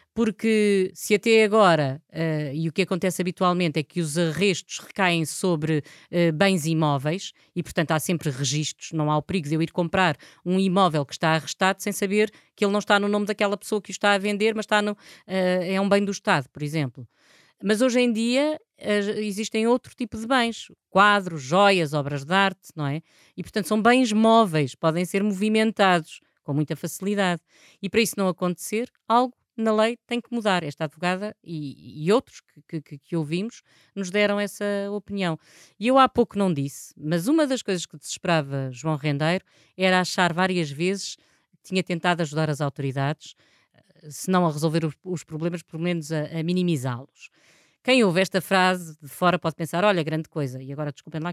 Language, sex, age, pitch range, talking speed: Portuguese, female, 20-39, 160-210 Hz, 185 wpm